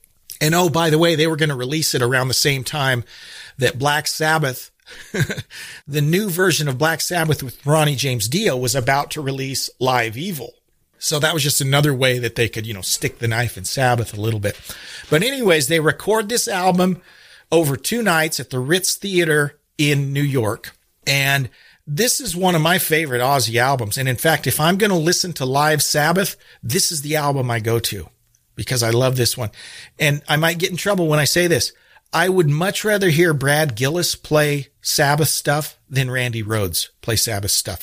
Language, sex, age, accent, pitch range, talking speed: English, male, 40-59, American, 125-165 Hz, 200 wpm